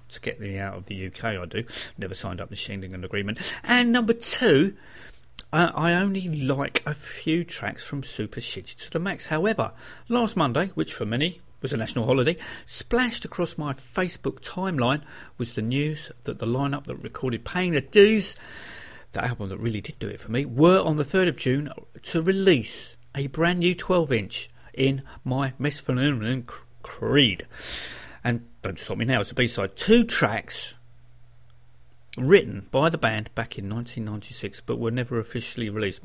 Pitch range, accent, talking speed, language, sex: 115-165 Hz, British, 175 wpm, English, male